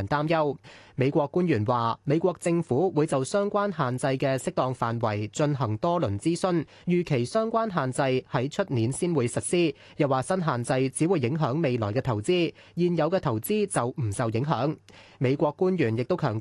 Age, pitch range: 20-39, 125-170 Hz